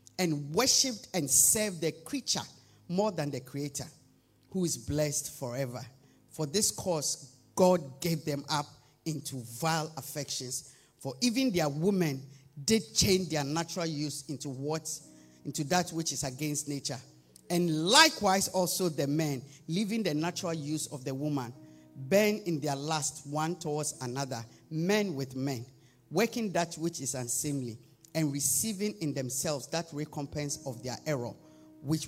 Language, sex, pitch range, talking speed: English, male, 140-230 Hz, 145 wpm